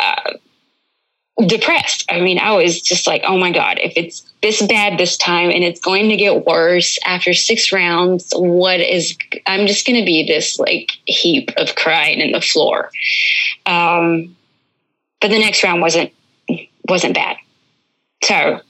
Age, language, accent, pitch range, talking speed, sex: 20-39, English, American, 170-200 Hz, 160 wpm, female